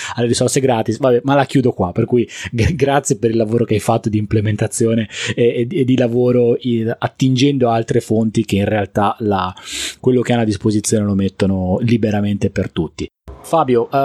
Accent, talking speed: native, 190 wpm